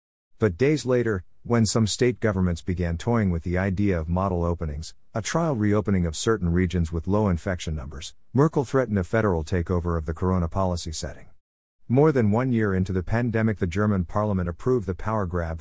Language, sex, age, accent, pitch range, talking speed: English, male, 50-69, American, 85-110 Hz, 190 wpm